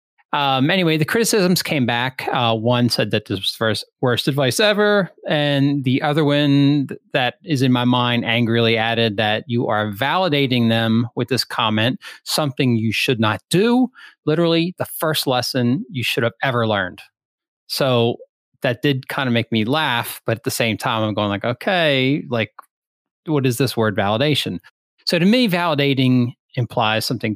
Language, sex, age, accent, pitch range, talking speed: English, male, 40-59, American, 115-145 Hz, 170 wpm